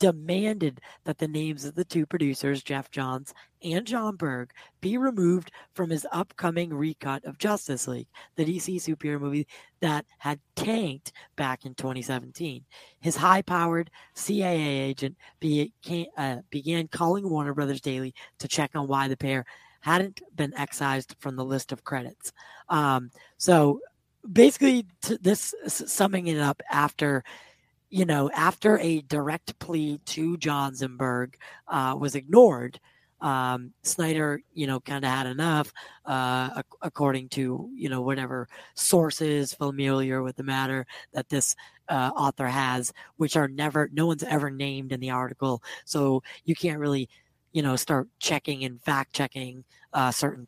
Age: 40-59